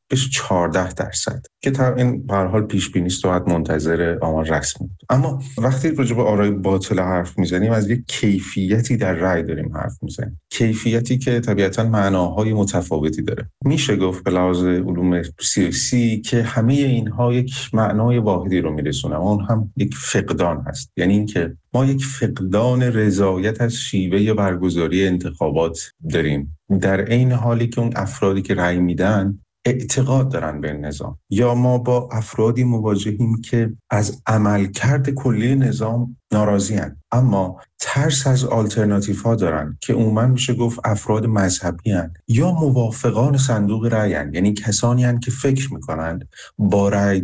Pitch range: 95-120 Hz